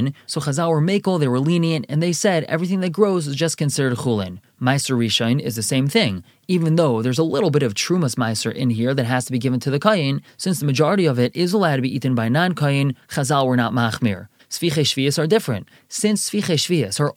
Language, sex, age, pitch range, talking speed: English, male, 20-39, 125-170 Hz, 230 wpm